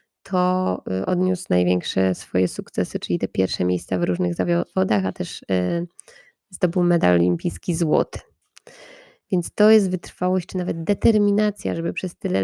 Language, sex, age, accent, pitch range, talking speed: Polish, female, 20-39, native, 165-195 Hz, 135 wpm